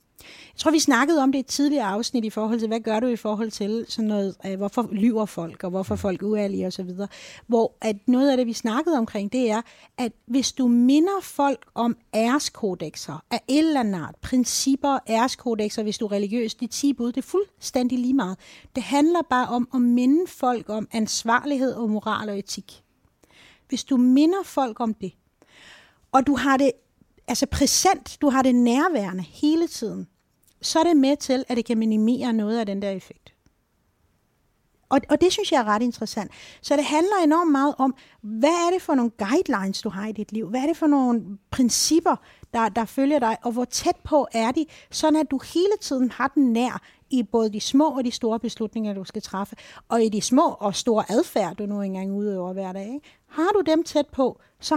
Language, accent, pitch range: Danish, native, 215-280 Hz